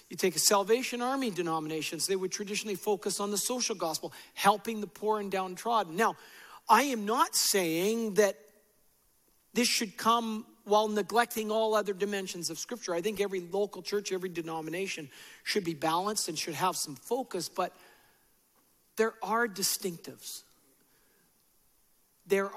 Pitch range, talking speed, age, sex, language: 165-210 Hz, 145 wpm, 50-69, male, English